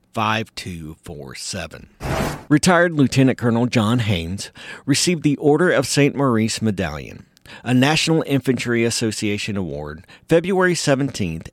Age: 50-69